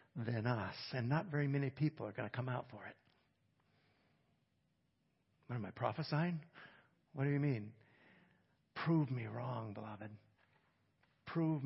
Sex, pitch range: male, 120-145 Hz